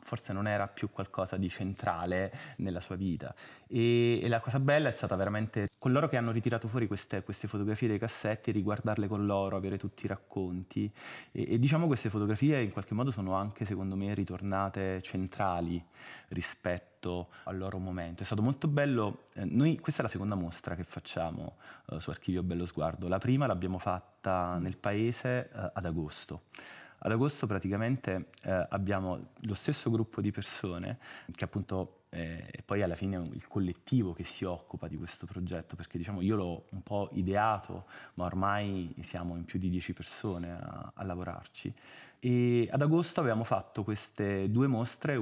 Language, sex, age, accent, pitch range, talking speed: Italian, male, 20-39, native, 90-110 Hz, 175 wpm